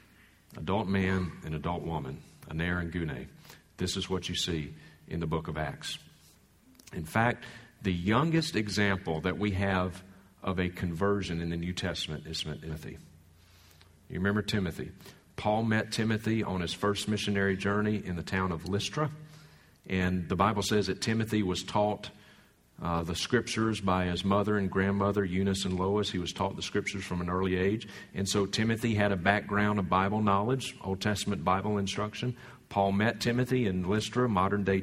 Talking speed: 170 wpm